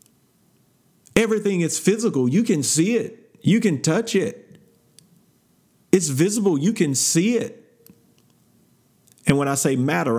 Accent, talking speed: American, 130 wpm